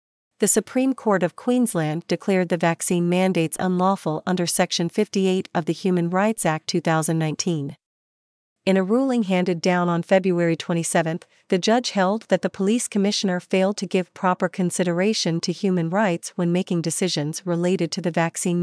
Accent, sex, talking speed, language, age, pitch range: American, female, 160 wpm, English, 50-69, 170-200 Hz